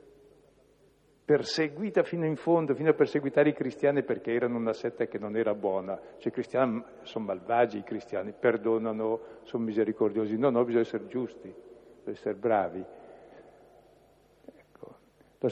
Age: 60-79